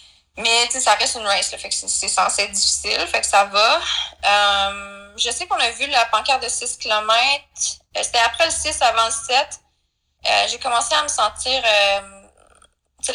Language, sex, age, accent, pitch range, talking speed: French, female, 20-39, Canadian, 200-235 Hz, 195 wpm